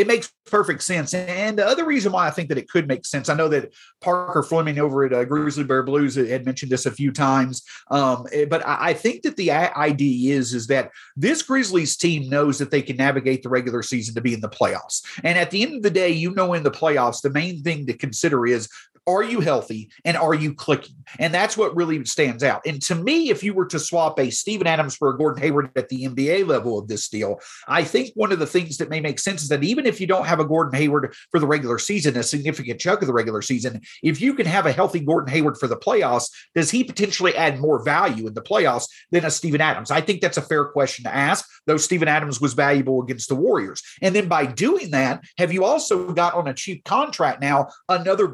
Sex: male